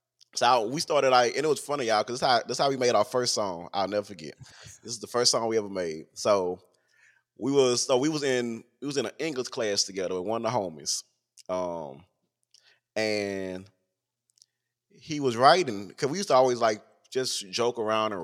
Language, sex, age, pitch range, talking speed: English, male, 20-39, 100-135 Hz, 205 wpm